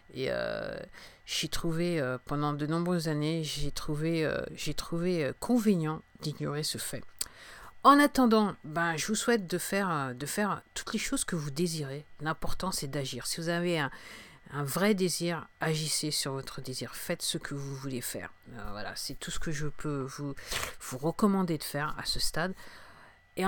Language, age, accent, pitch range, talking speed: English, 50-69, French, 145-185 Hz, 180 wpm